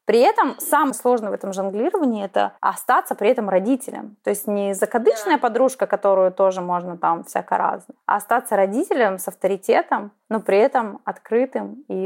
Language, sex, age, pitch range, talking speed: Russian, female, 20-39, 195-250 Hz, 160 wpm